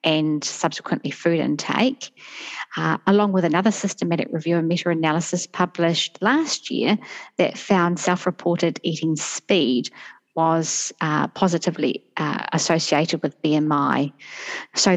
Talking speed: 110 wpm